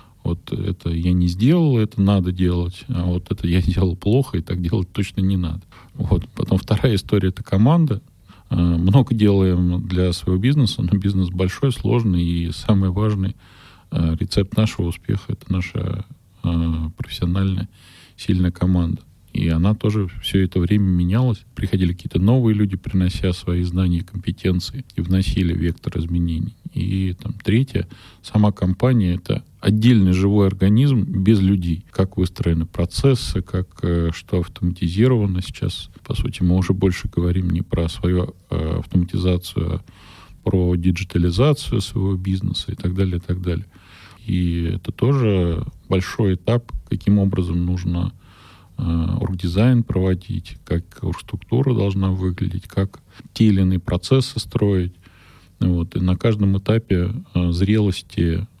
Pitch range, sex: 90-105 Hz, male